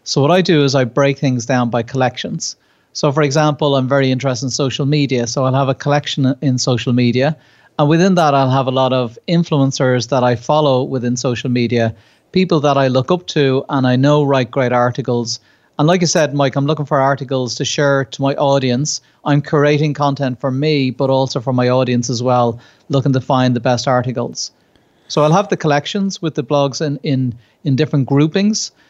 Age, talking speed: 40-59, 205 wpm